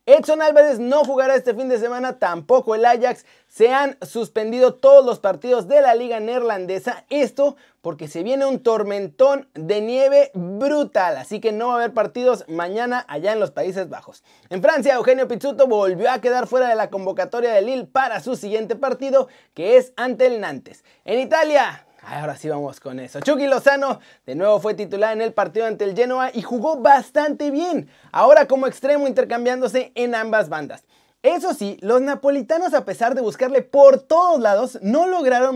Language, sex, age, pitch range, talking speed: Spanish, male, 30-49, 215-280 Hz, 180 wpm